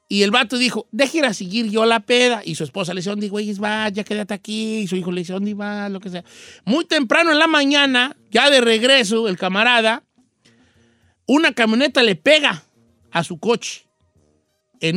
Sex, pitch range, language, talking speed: male, 170-235 Hz, Spanish, 190 wpm